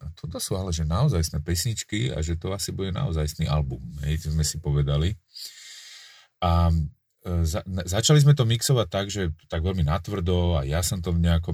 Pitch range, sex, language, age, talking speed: 80-95 Hz, male, Slovak, 30-49, 170 wpm